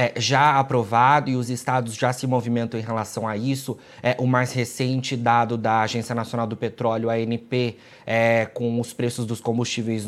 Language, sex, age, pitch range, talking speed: Portuguese, male, 20-39, 115-135 Hz, 185 wpm